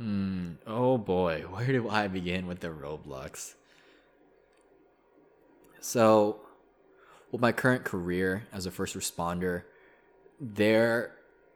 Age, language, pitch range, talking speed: 20-39, English, 90-105 Hz, 105 wpm